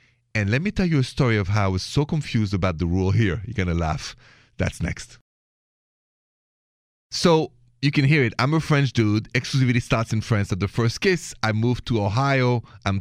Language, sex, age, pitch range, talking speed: English, male, 30-49, 110-140 Hz, 210 wpm